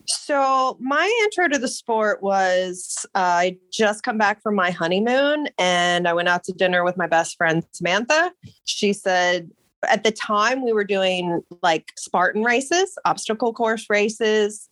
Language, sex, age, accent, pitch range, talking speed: English, female, 20-39, American, 175-225 Hz, 165 wpm